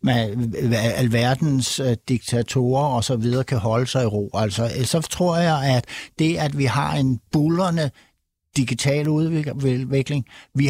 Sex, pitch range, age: male, 120-145 Hz, 60-79